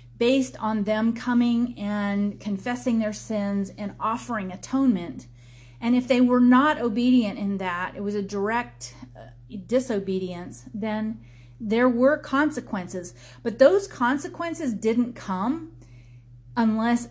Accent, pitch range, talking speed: American, 180-235 Hz, 120 wpm